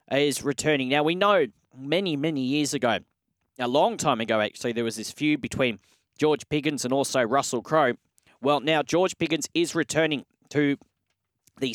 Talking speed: 170 wpm